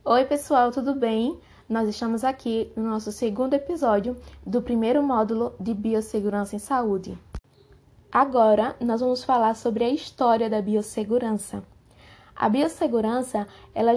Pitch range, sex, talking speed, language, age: 215-270 Hz, female, 130 wpm, Portuguese, 10-29